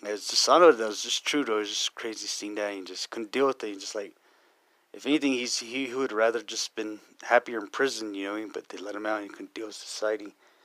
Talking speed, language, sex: 270 wpm, English, male